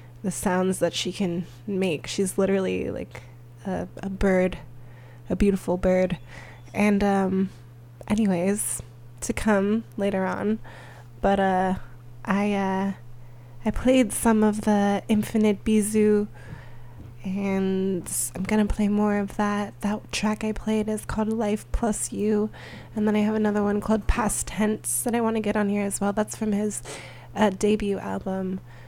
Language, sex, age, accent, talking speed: English, female, 20-39, American, 150 wpm